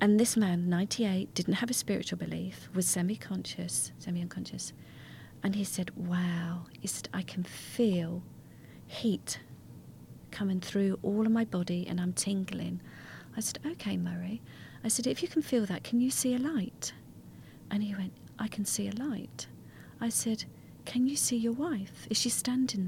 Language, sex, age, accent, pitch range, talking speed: English, female, 40-59, British, 170-215 Hz, 165 wpm